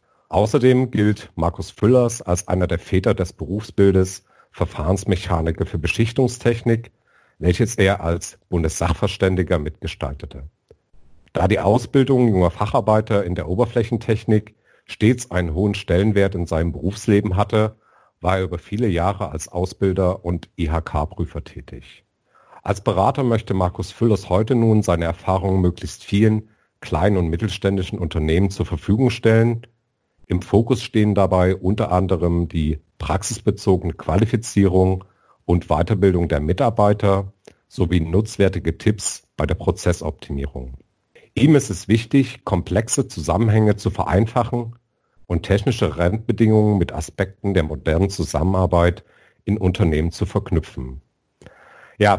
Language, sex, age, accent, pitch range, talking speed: German, male, 50-69, German, 85-110 Hz, 115 wpm